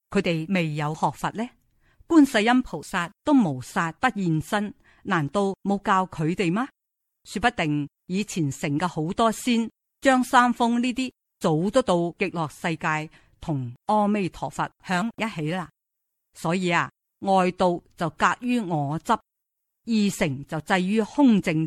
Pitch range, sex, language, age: 160-215 Hz, female, Chinese, 50-69